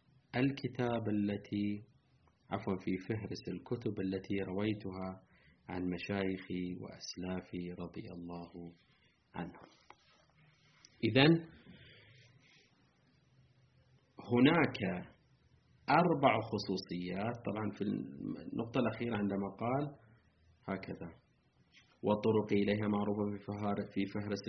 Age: 30-49